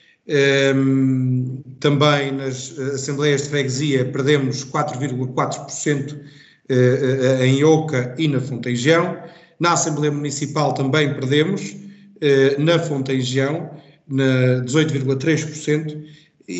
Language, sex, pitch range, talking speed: Portuguese, male, 130-155 Hz, 80 wpm